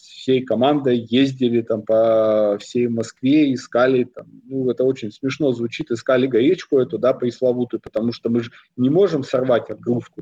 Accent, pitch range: native, 120-150 Hz